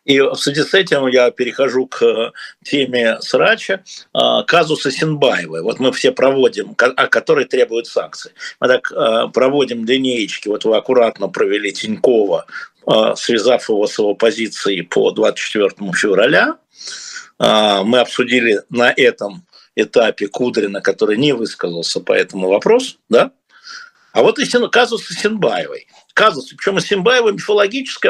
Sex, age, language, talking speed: male, 50-69, Russian, 125 wpm